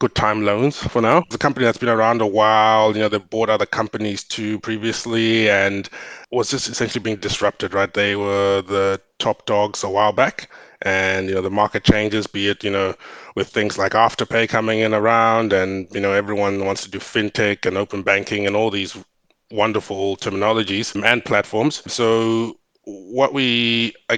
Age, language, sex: 20-39, English, male